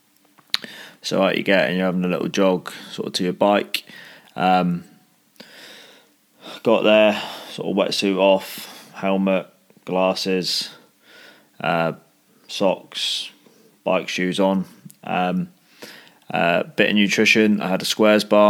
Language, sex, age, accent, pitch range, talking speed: English, male, 20-39, British, 95-110 Hz, 125 wpm